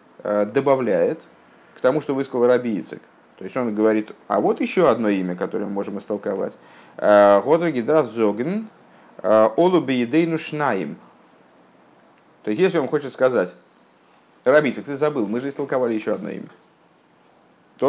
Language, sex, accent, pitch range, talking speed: Russian, male, native, 105-145 Hz, 130 wpm